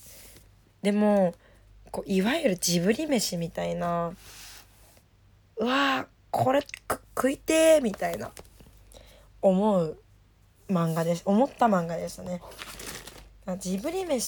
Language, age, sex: Japanese, 20-39, female